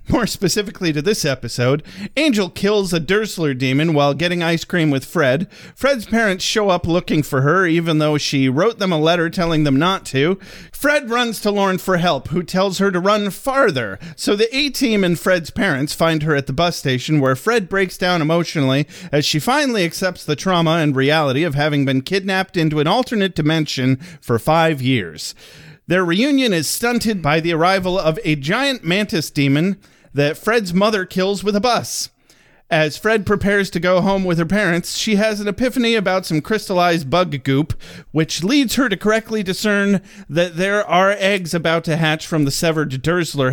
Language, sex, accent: English, male, American